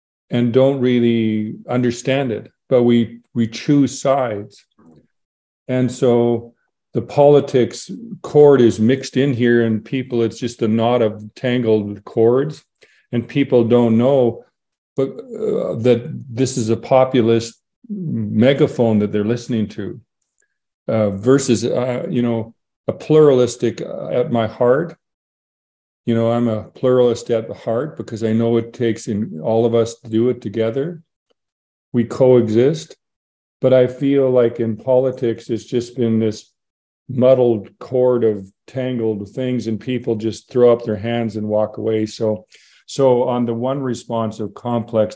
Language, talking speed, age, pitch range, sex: English, 145 wpm, 50-69, 110-130 Hz, male